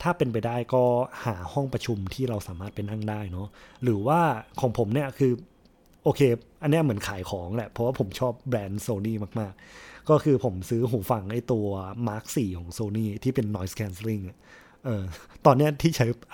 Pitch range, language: 100-130 Hz, Thai